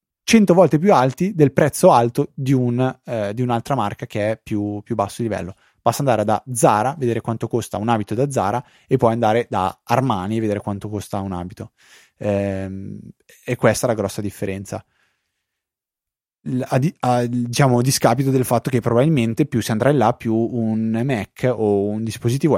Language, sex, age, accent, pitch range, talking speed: Italian, male, 20-39, native, 105-130 Hz, 185 wpm